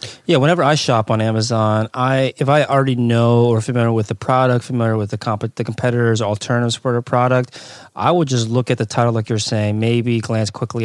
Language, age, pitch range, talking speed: English, 20-39, 105-125 Hz, 215 wpm